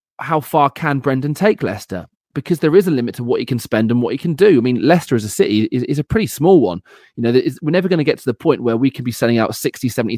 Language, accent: English, British